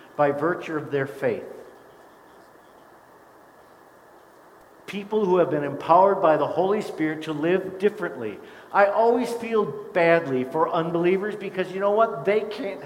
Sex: male